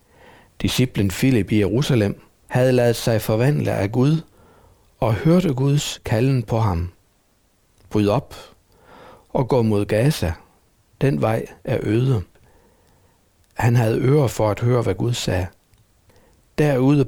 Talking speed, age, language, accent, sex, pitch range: 125 wpm, 60-79, Danish, native, male, 100-130 Hz